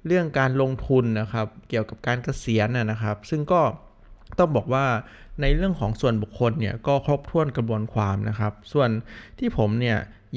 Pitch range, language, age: 110-135 Hz, Thai, 20-39